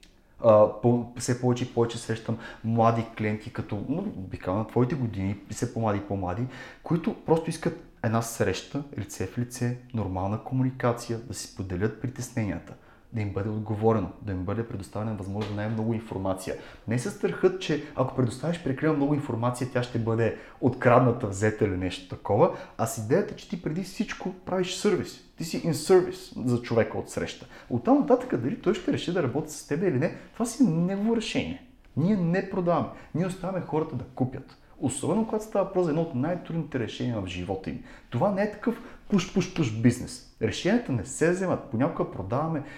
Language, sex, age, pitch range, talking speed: Bulgarian, male, 30-49, 115-155 Hz, 180 wpm